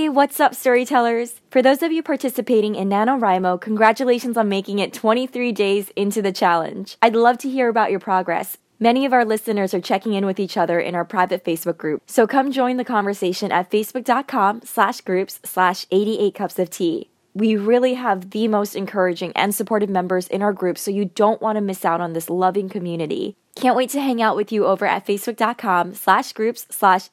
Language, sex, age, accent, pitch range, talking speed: English, female, 10-29, American, 190-235 Hz, 200 wpm